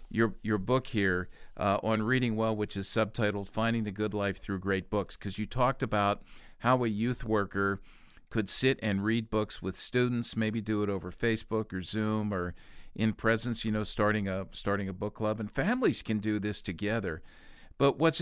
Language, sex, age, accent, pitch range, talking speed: English, male, 50-69, American, 100-120 Hz, 195 wpm